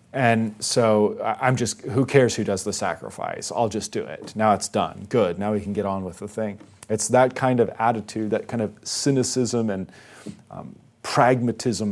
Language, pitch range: English, 105-115 Hz